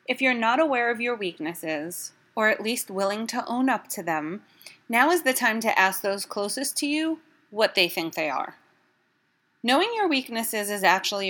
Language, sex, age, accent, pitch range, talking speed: English, female, 30-49, American, 180-245 Hz, 190 wpm